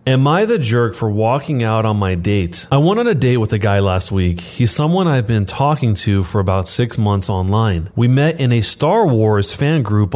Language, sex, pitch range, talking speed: English, male, 105-140 Hz, 230 wpm